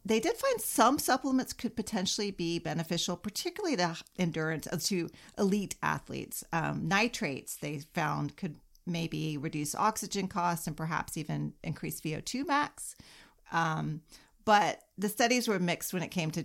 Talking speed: 145 wpm